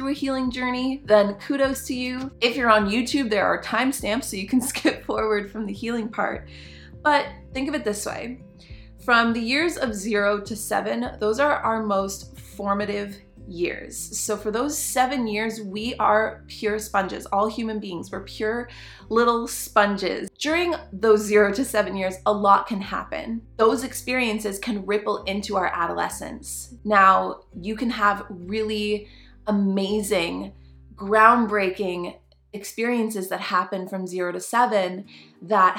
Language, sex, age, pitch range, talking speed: English, female, 20-39, 190-230 Hz, 150 wpm